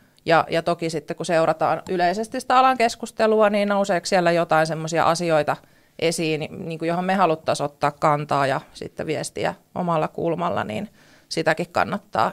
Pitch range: 160-185 Hz